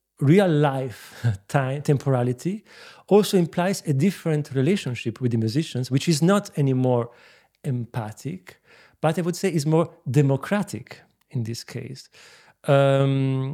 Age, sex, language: 40-59, male, English